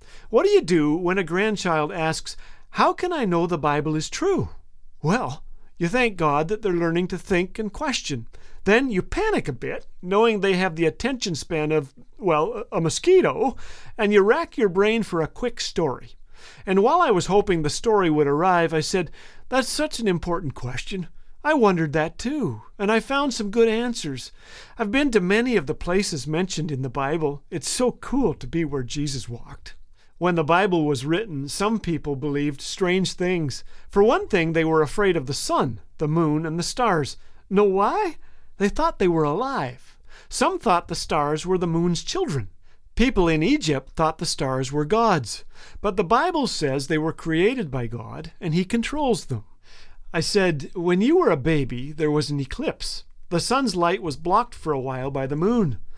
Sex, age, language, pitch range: male, 50-69, English, 150-215 Hz